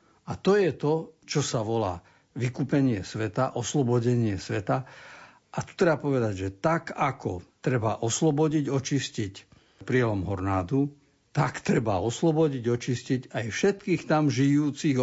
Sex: male